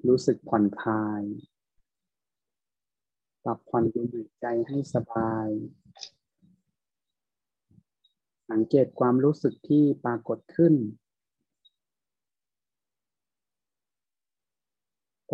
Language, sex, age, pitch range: Thai, male, 30-49, 110-125 Hz